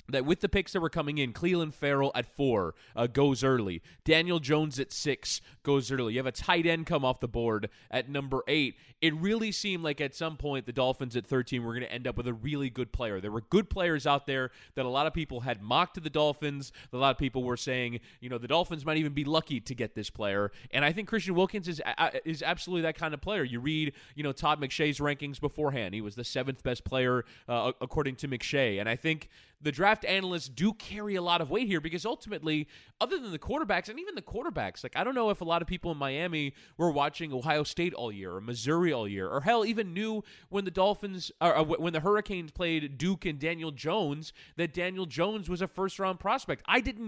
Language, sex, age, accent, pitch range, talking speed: English, male, 20-39, American, 130-175 Hz, 240 wpm